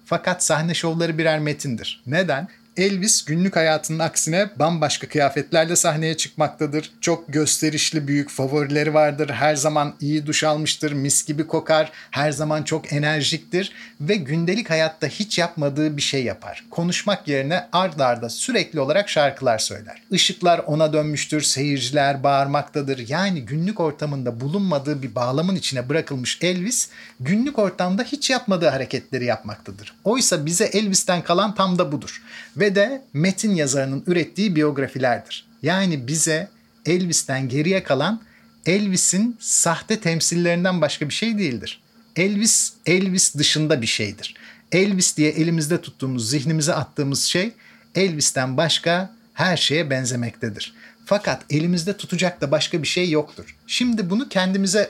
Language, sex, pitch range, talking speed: Turkish, male, 145-185 Hz, 130 wpm